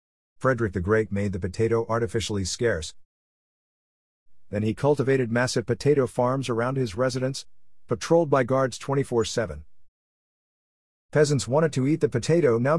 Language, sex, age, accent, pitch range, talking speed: English, male, 50-69, American, 90-125 Hz, 130 wpm